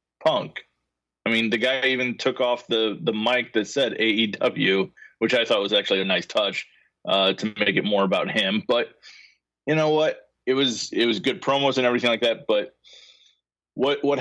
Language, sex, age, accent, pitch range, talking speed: English, male, 20-39, American, 100-120 Hz, 195 wpm